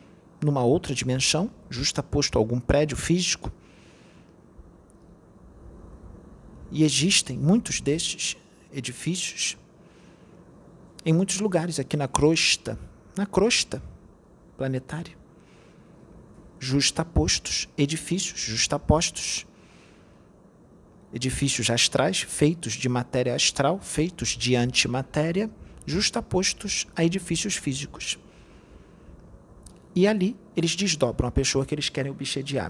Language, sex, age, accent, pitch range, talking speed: Portuguese, male, 40-59, Brazilian, 115-170 Hz, 90 wpm